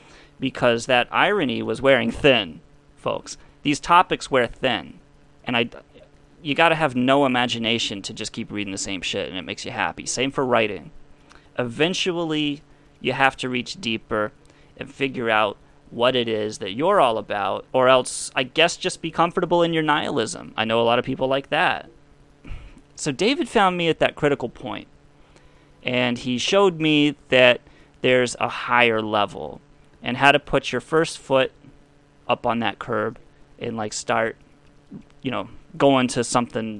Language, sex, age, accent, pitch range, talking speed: English, male, 30-49, American, 115-145 Hz, 170 wpm